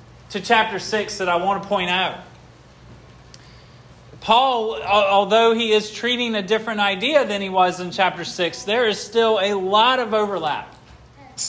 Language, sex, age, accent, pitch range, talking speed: English, male, 30-49, American, 180-235 Hz, 155 wpm